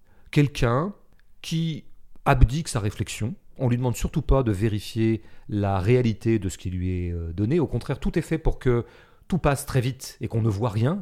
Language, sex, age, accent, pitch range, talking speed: French, male, 40-59, French, 100-135 Hz, 195 wpm